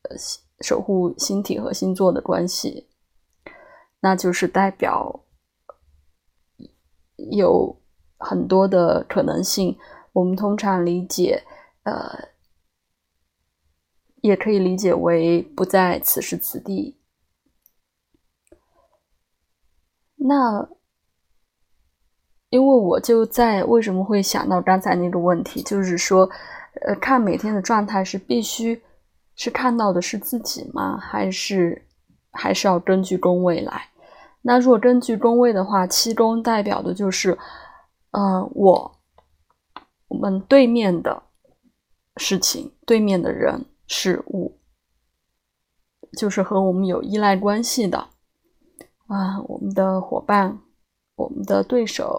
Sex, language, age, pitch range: female, Chinese, 20-39, 170-225 Hz